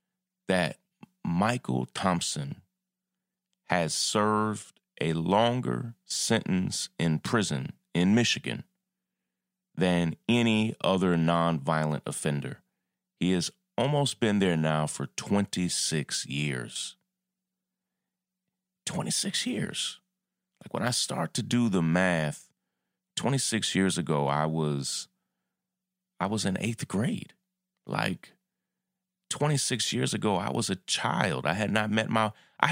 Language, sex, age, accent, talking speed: English, male, 30-49, American, 110 wpm